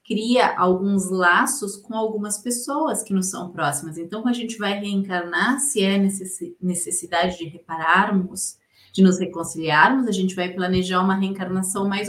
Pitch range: 185-220 Hz